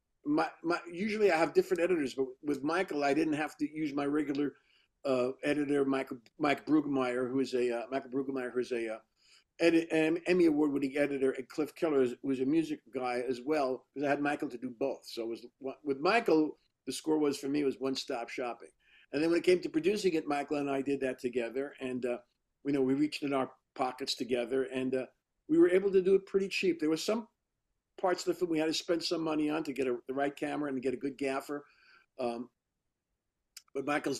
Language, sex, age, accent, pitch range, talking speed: English, male, 50-69, American, 130-155 Hz, 225 wpm